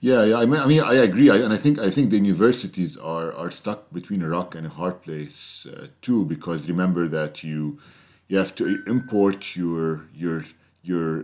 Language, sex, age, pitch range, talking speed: English, male, 40-59, 80-105 Hz, 200 wpm